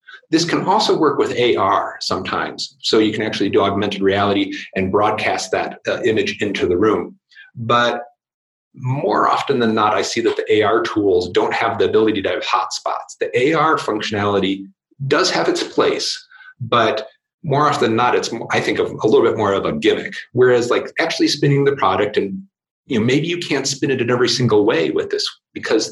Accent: American